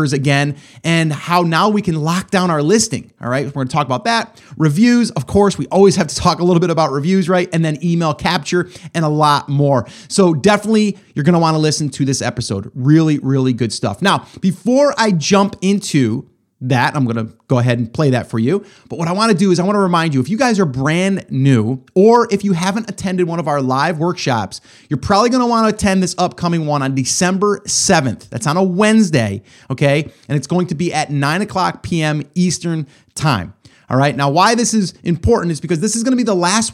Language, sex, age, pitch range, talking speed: English, male, 30-49, 145-195 Hz, 235 wpm